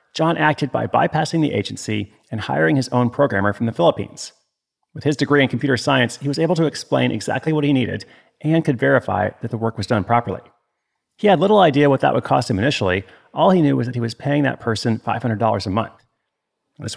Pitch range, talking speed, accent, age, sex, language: 115-150 Hz, 220 wpm, American, 40-59, male, English